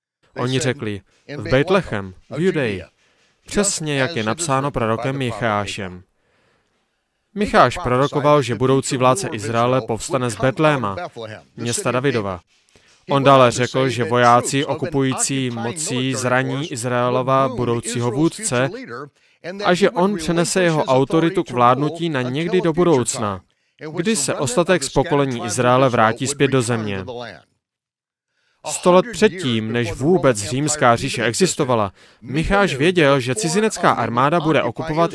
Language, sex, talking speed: Slovak, male, 120 wpm